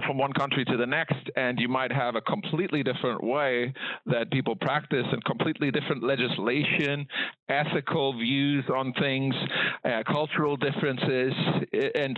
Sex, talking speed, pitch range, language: male, 145 wpm, 125-150 Hz, English